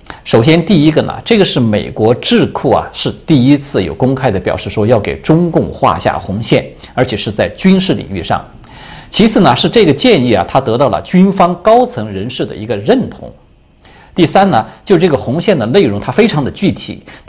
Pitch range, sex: 110-175 Hz, male